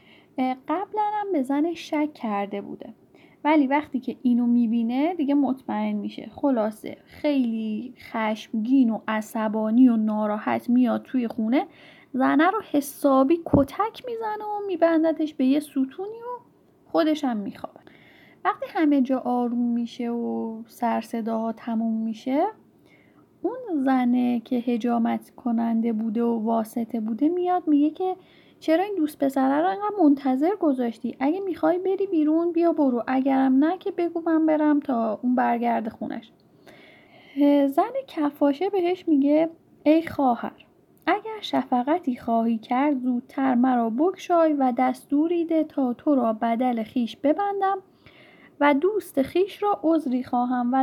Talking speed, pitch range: 130 wpm, 240-325 Hz